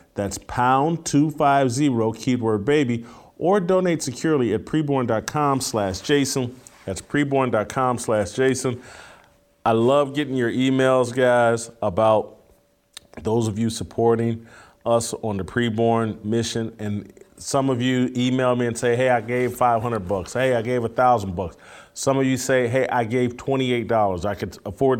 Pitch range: 105-130 Hz